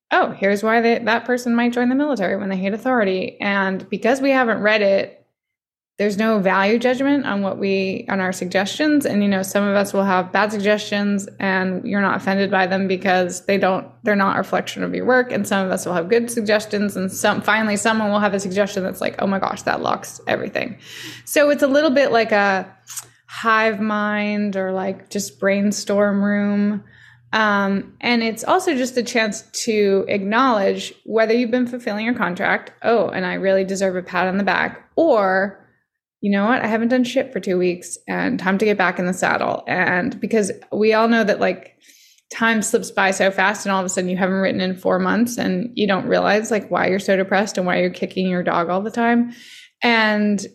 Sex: female